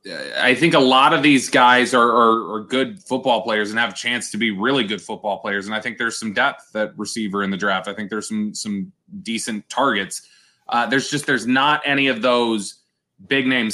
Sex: male